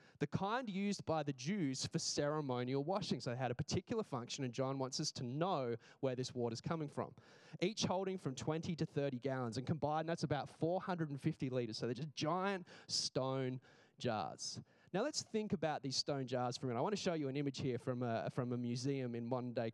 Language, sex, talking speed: English, male, 210 wpm